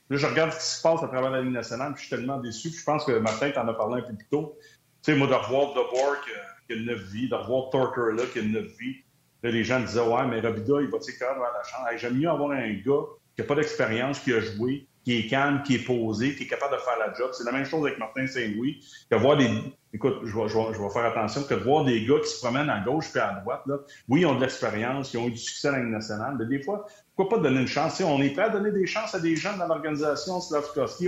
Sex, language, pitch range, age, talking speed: male, French, 115-150 Hz, 40-59, 300 wpm